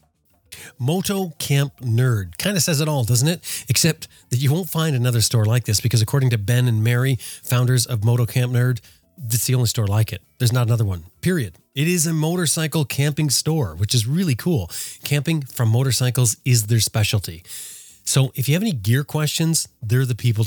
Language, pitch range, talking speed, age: English, 110-135 Hz, 195 wpm, 30-49